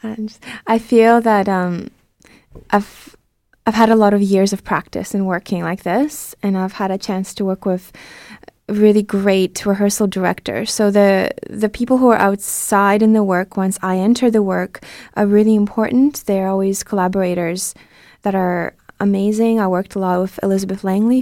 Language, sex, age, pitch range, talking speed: French, female, 20-39, 185-220 Hz, 170 wpm